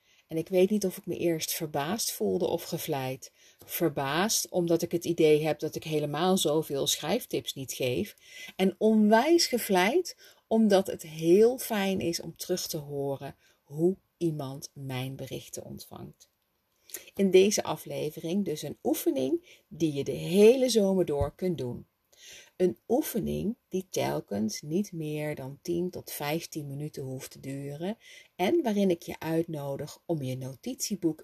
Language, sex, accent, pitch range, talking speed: Dutch, female, Dutch, 140-195 Hz, 150 wpm